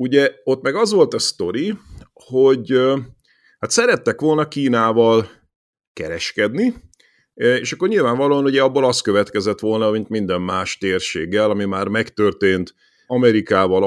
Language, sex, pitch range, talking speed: Hungarian, male, 95-120 Hz, 125 wpm